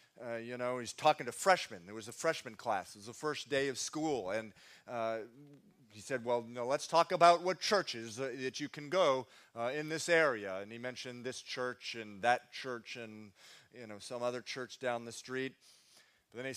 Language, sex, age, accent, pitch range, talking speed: English, male, 40-59, American, 100-130 Hz, 215 wpm